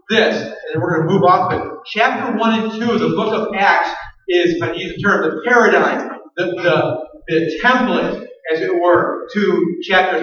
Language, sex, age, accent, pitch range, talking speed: English, male, 40-59, American, 155-220 Hz, 215 wpm